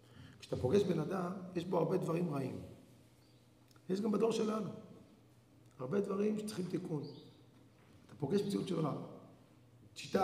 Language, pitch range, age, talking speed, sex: Hebrew, 130-190 Hz, 40-59, 135 wpm, male